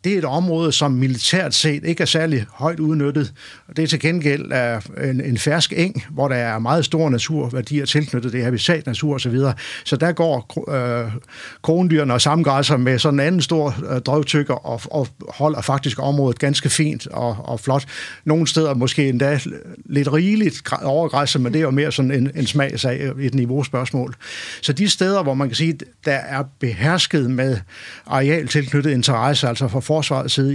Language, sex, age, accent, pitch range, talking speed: Danish, male, 60-79, native, 130-155 Hz, 175 wpm